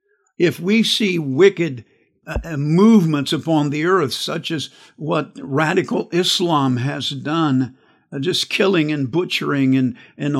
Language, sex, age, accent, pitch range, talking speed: English, male, 60-79, American, 135-165 Hz, 135 wpm